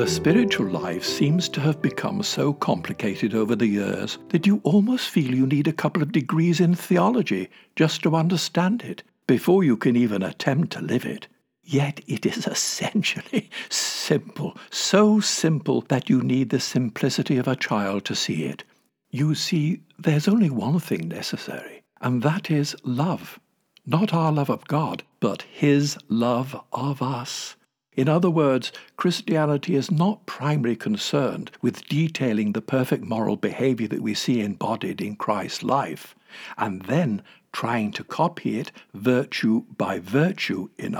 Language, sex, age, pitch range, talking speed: English, male, 60-79, 125-180 Hz, 155 wpm